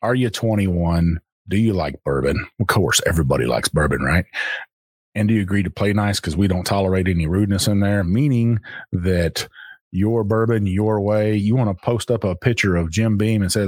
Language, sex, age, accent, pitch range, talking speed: English, male, 30-49, American, 90-110 Hz, 200 wpm